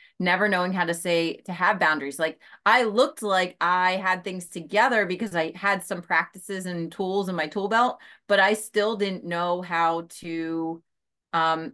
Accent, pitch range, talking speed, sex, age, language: American, 165-200 Hz, 180 wpm, female, 30-49, English